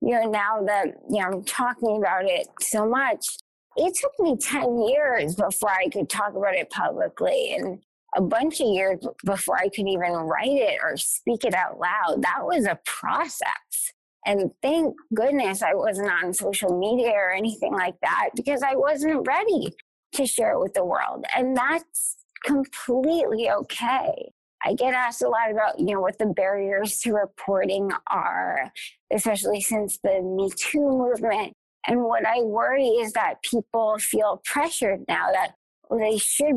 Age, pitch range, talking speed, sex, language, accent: 20-39, 195-275 Hz, 165 wpm, female, English, American